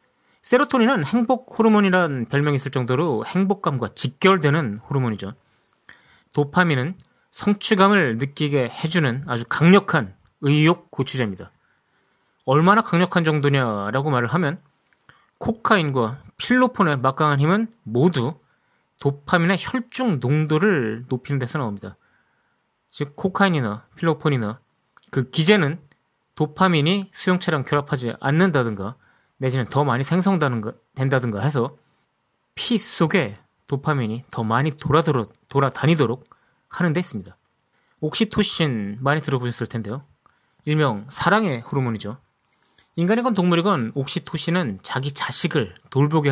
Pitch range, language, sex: 125-175 Hz, Korean, male